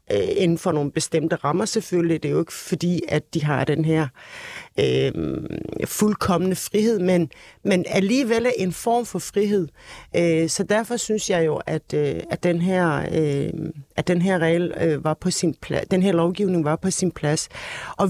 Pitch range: 165-215 Hz